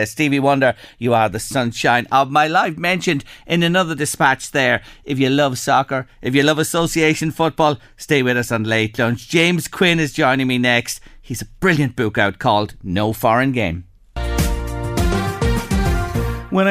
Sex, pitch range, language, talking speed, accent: male, 110-155 Hz, English, 160 wpm, Irish